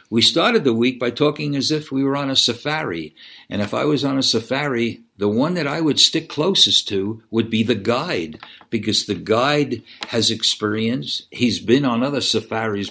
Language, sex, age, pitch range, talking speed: English, male, 60-79, 115-150 Hz, 195 wpm